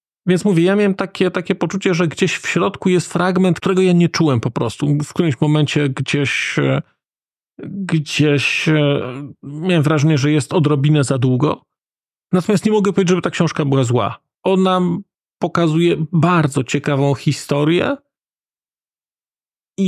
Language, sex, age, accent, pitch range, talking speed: Polish, male, 40-59, native, 140-180 Hz, 140 wpm